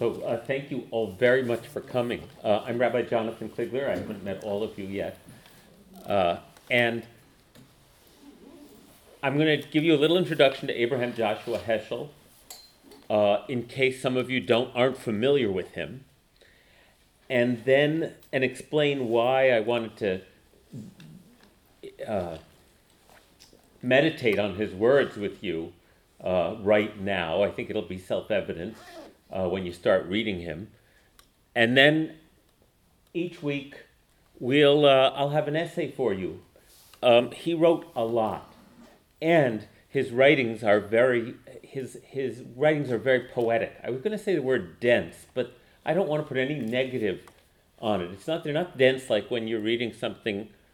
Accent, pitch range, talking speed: American, 105-140 Hz, 155 wpm